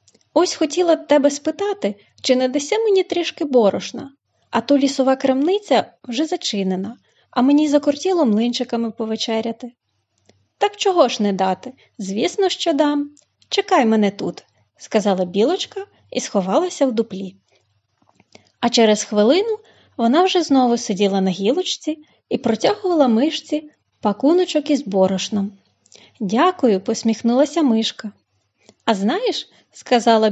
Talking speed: 120 wpm